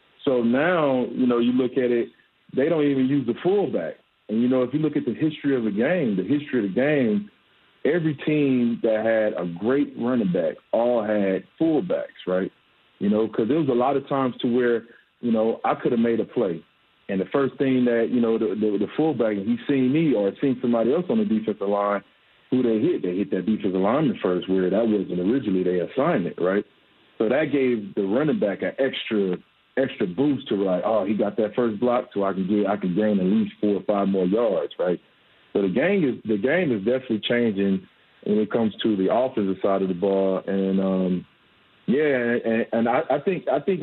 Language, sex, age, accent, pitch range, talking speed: English, male, 40-59, American, 105-140 Hz, 225 wpm